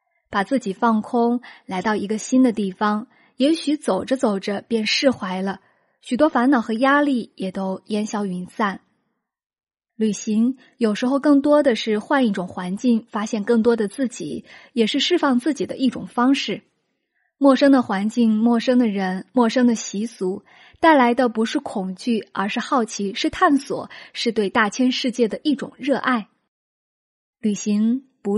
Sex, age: female, 20-39